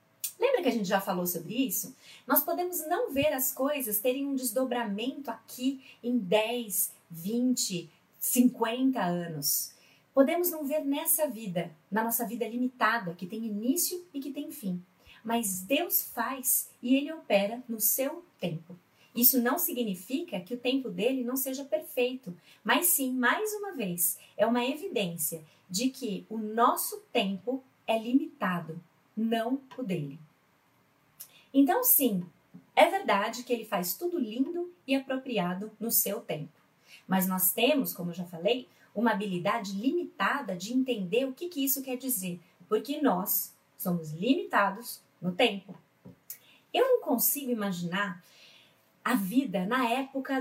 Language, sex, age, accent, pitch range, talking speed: Portuguese, female, 30-49, Brazilian, 195-265 Hz, 145 wpm